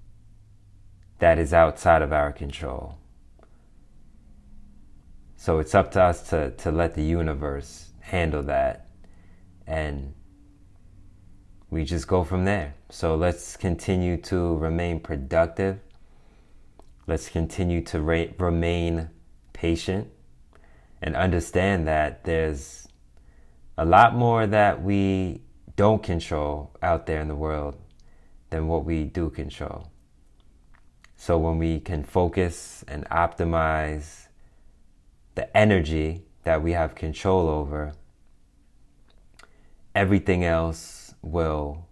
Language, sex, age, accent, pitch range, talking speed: English, male, 30-49, American, 75-90 Hz, 105 wpm